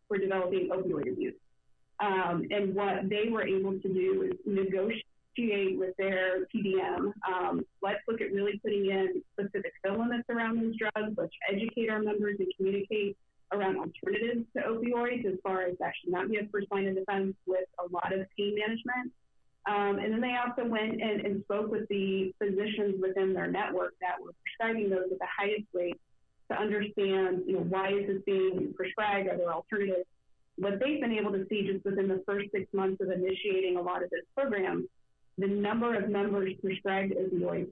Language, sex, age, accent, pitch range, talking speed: English, female, 30-49, American, 190-215 Hz, 185 wpm